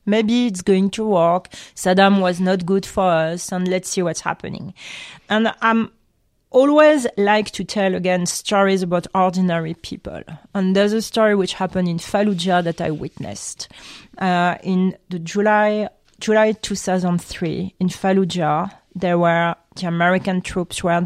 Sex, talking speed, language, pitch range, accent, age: female, 140 wpm, English, 170-195 Hz, French, 30-49